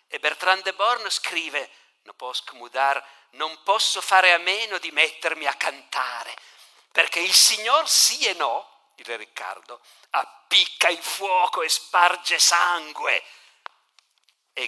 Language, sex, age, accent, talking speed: Italian, male, 50-69, native, 130 wpm